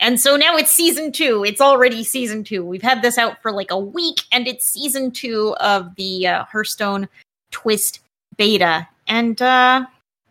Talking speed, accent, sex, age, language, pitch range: 175 wpm, American, female, 30-49, English, 195-275 Hz